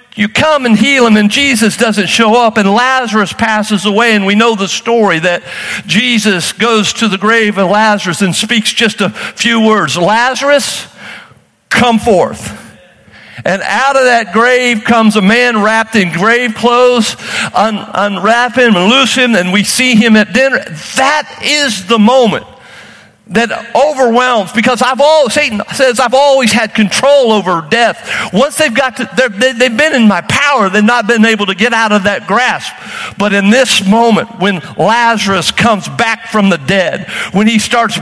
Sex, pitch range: male, 205-245 Hz